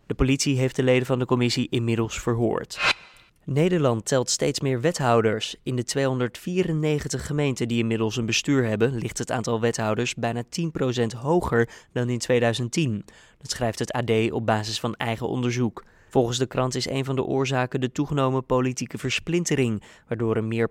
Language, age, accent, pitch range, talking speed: Dutch, 20-39, Dutch, 115-135 Hz, 170 wpm